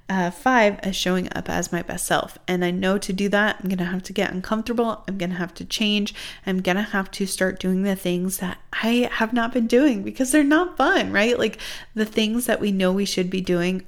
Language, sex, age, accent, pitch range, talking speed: English, female, 20-39, American, 185-225 Hz, 250 wpm